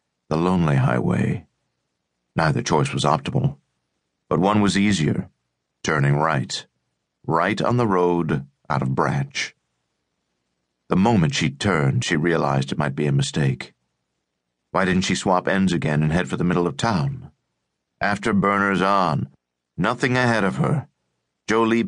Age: 50-69